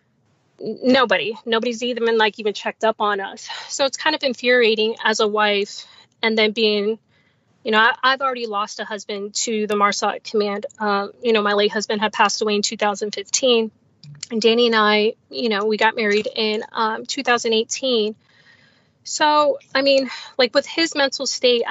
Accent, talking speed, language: American, 175 wpm, English